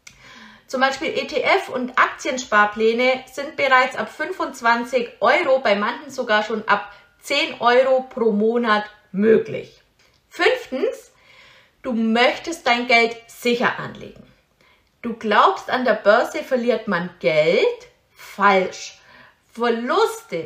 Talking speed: 110 wpm